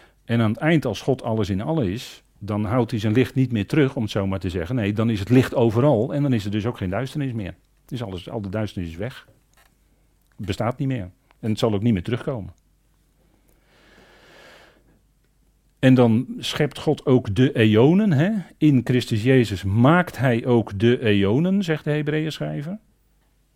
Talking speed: 190 wpm